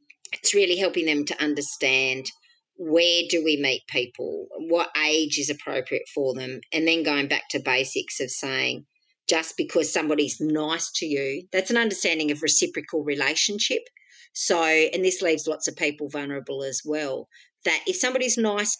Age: 50-69